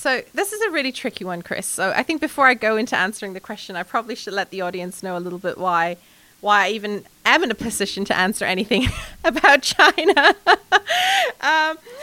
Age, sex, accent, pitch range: 30-49, female, British, 190-235 Hz